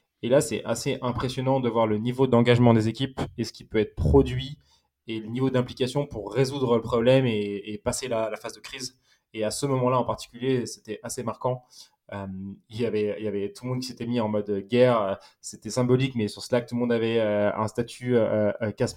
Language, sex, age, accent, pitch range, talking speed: French, male, 20-39, French, 110-125 Hz, 220 wpm